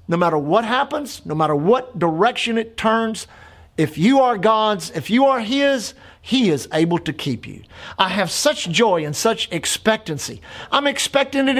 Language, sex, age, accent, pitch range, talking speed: English, male, 50-69, American, 175-250 Hz, 175 wpm